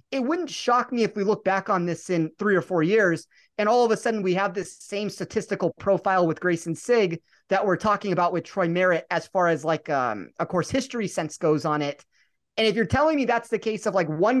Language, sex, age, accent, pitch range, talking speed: English, male, 30-49, American, 170-225 Hz, 245 wpm